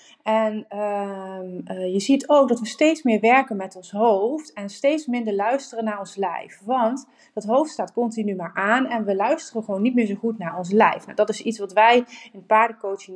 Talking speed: 210 wpm